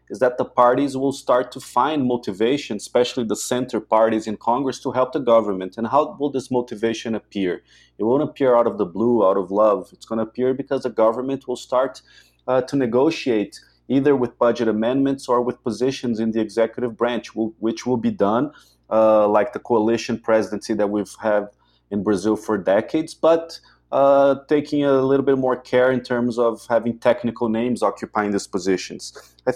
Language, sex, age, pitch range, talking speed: English, male, 30-49, 110-130 Hz, 185 wpm